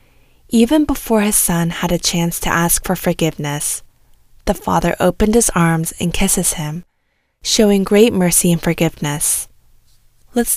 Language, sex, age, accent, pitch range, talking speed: English, female, 10-29, American, 170-210 Hz, 140 wpm